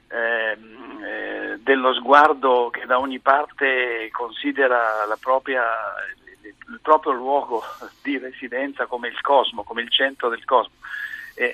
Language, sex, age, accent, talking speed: Italian, male, 50-69, native, 135 wpm